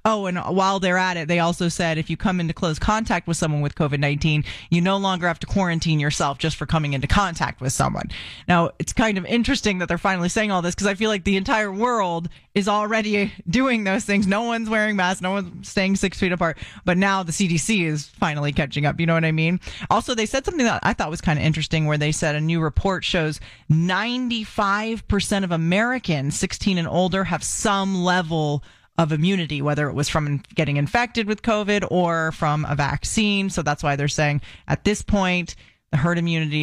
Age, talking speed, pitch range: 30-49, 215 wpm, 155-200 Hz